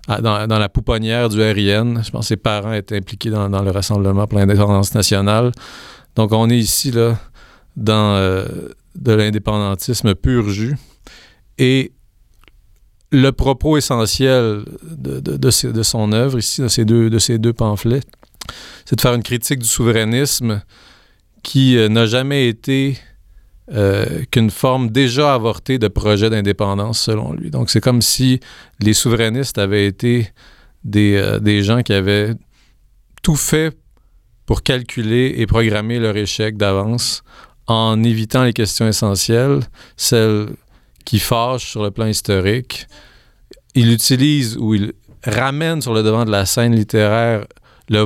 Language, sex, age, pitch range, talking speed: French, male, 40-59, 105-125 Hz, 150 wpm